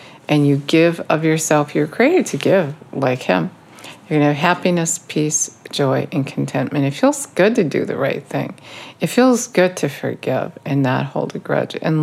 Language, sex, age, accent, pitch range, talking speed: English, female, 50-69, American, 145-175 Hz, 195 wpm